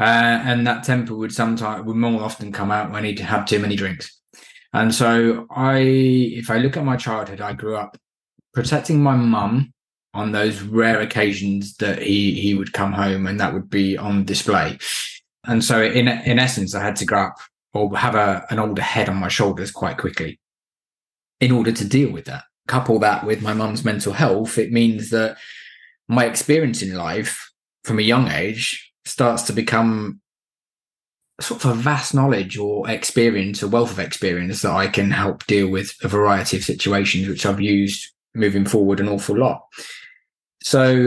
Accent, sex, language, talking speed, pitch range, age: British, male, English, 185 wpm, 100-120 Hz, 20-39